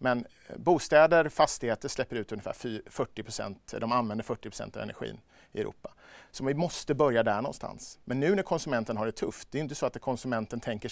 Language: Swedish